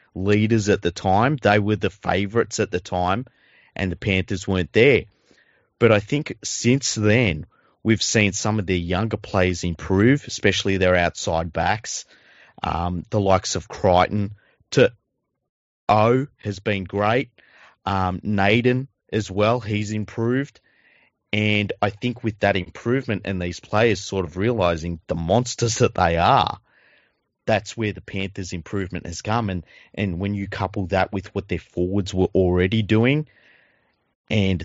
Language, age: English, 30-49